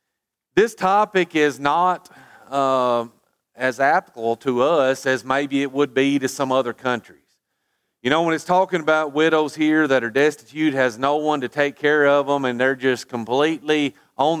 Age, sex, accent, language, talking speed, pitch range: 40-59, male, American, English, 175 wpm, 120-150 Hz